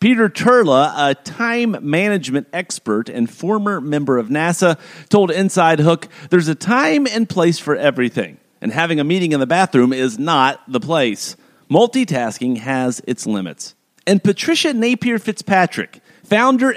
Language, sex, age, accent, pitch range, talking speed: English, male, 50-69, American, 130-220 Hz, 145 wpm